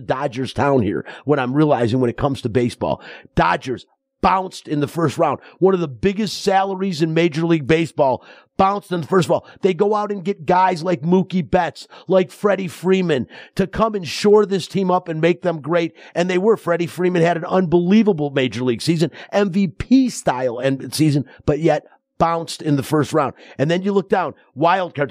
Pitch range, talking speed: 145-185 Hz, 195 wpm